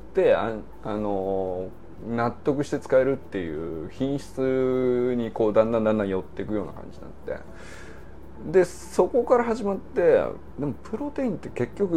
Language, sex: Japanese, male